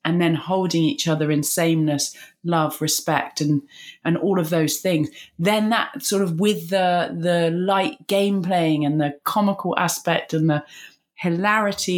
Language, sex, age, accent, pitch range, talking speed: English, female, 30-49, British, 160-210 Hz, 160 wpm